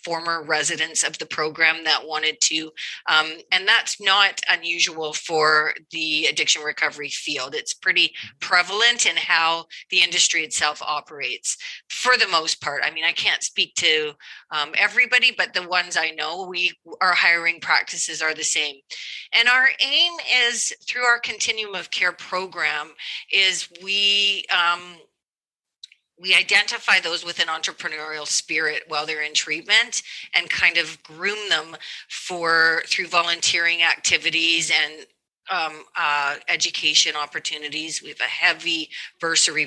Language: English